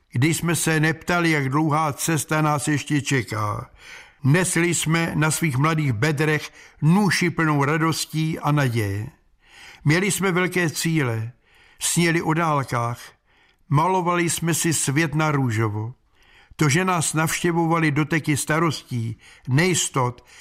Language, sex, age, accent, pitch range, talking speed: Czech, male, 60-79, native, 135-165 Hz, 120 wpm